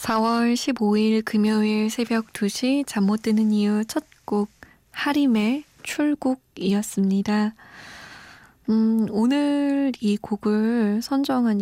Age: 20-39